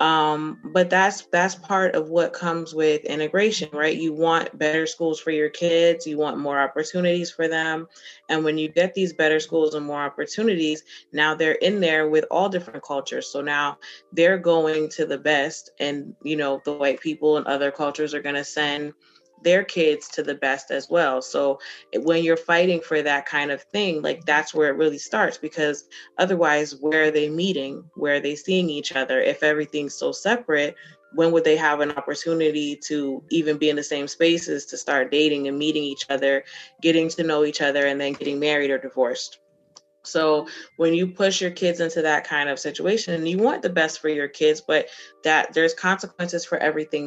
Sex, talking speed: female, 200 wpm